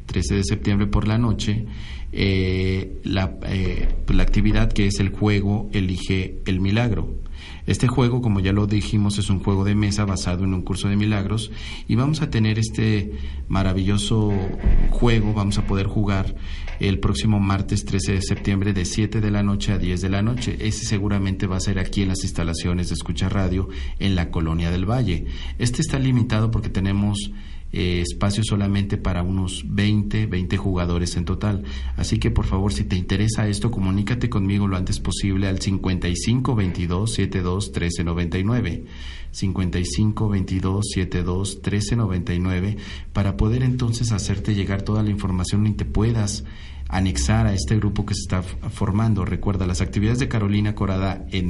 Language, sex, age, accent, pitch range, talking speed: Spanish, male, 40-59, Mexican, 90-105 Hz, 165 wpm